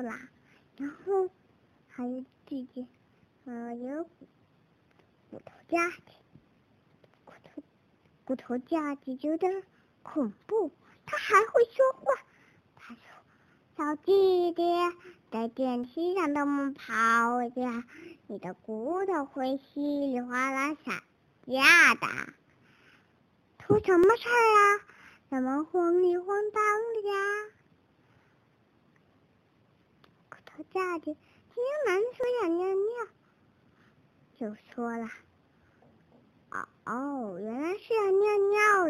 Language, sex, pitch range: Chinese, male, 250-360 Hz